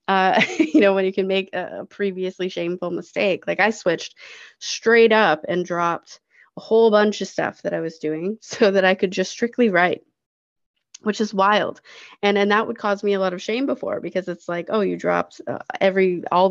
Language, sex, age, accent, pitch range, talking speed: English, female, 20-39, American, 170-205 Hz, 205 wpm